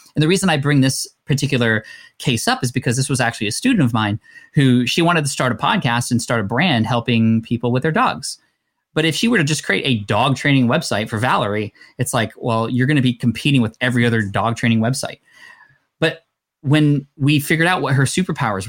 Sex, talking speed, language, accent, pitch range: male, 220 wpm, English, American, 120-155 Hz